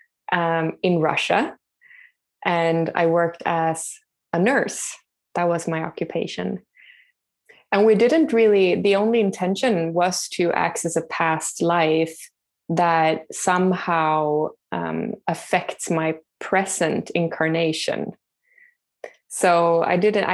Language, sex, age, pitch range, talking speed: English, female, 20-39, 165-205 Hz, 105 wpm